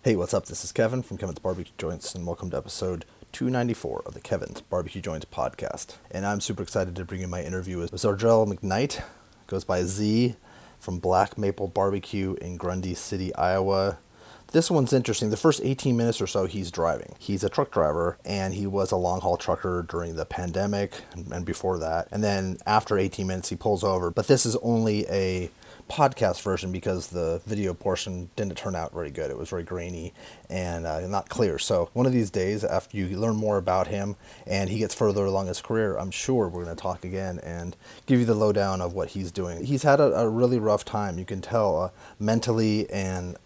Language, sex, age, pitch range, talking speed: English, male, 30-49, 90-110 Hz, 210 wpm